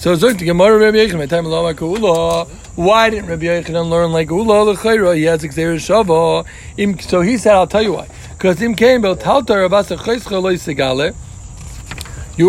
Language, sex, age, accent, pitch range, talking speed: English, male, 60-79, American, 180-245 Hz, 200 wpm